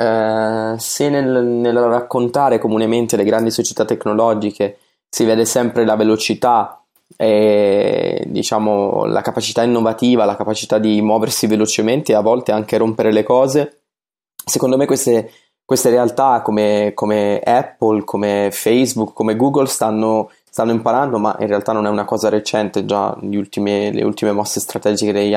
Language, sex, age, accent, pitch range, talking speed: Italian, male, 20-39, native, 105-125 Hz, 150 wpm